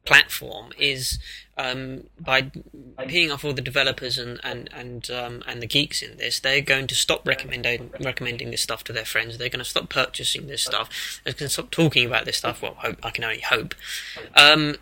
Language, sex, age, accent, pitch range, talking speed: English, male, 20-39, British, 130-155 Hz, 205 wpm